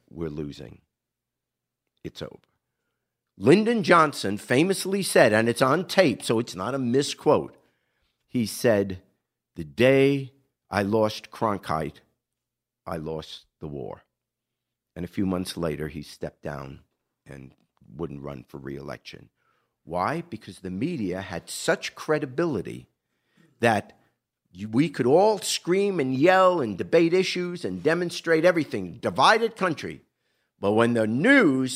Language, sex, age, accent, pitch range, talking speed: English, male, 50-69, American, 115-180 Hz, 125 wpm